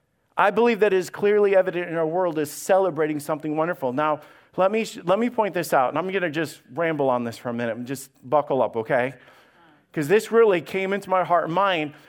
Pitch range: 180-235 Hz